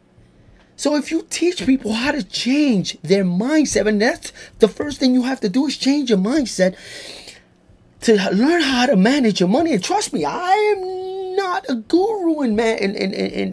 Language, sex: English, male